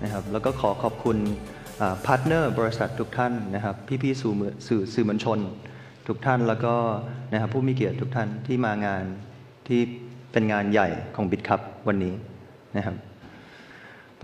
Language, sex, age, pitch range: Thai, male, 20-39, 110-130 Hz